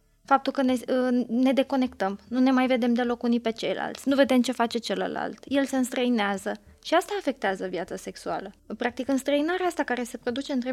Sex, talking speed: female, 185 wpm